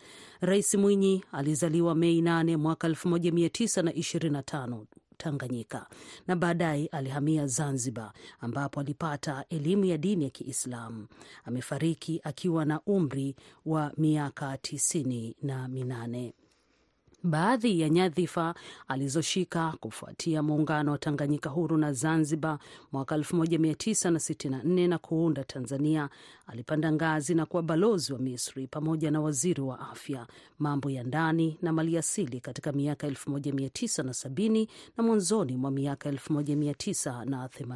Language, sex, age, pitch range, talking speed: Swahili, female, 40-59, 135-170 Hz, 110 wpm